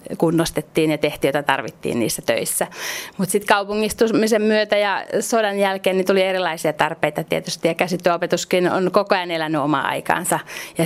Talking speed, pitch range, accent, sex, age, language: 150 wpm, 170-195 Hz, native, female, 30-49, Finnish